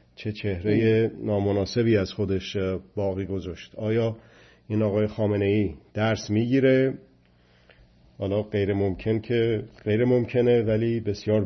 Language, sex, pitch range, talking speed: Persian, male, 100-115 Hz, 105 wpm